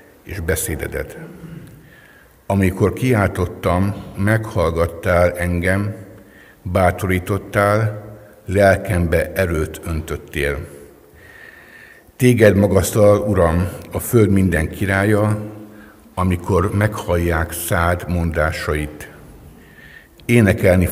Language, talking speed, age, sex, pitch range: Hungarian, 65 wpm, 60-79, male, 85-105 Hz